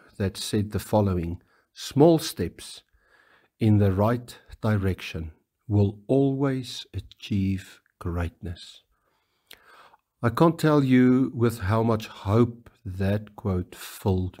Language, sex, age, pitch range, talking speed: English, male, 50-69, 95-115 Hz, 105 wpm